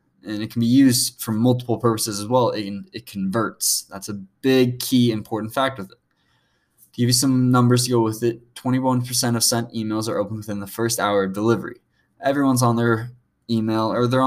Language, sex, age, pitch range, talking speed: English, male, 20-39, 110-125 Hz, 200 wpm